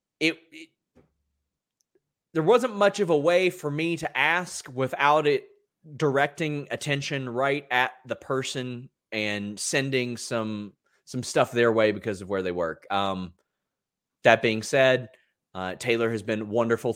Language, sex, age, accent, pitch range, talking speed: English, male, 30-49, American, 110-145 Hz, 145 wpm